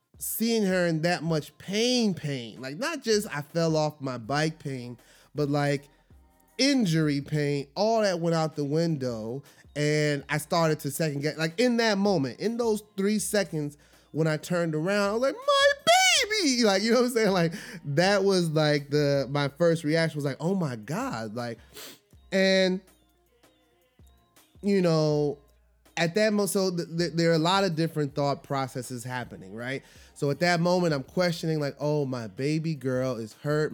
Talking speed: 175 wpm